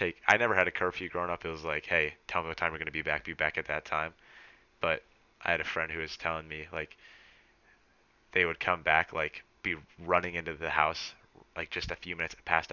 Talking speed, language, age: 240 wpm, English, 20-39